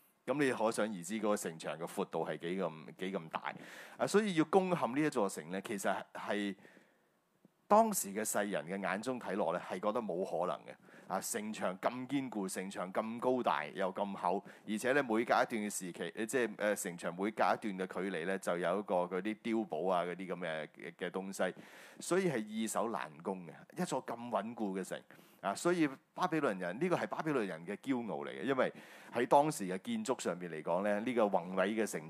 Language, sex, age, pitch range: Chinese, male, 30-49, 95-145 Hz